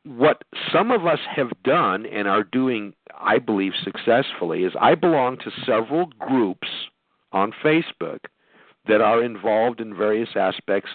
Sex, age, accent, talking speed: male, 50-69, American, 140 wpm